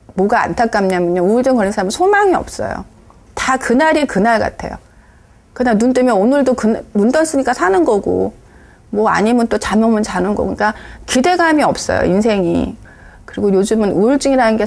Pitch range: 195-275 Hz